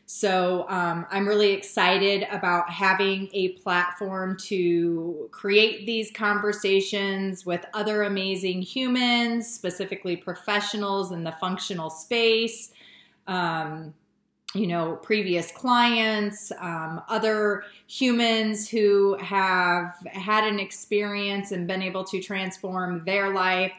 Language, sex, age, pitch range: English, female, 30-49, 175-220 Hz